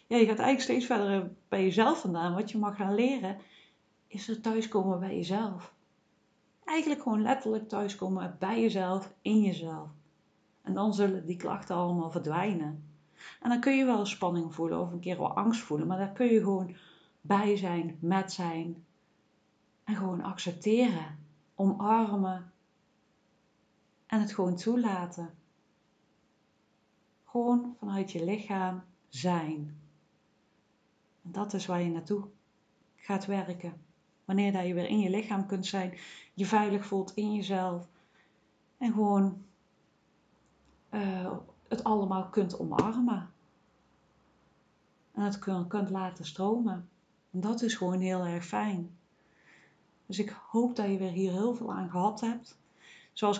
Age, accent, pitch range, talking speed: 40-59, Dutch, 175-210 Hz, 135 wpm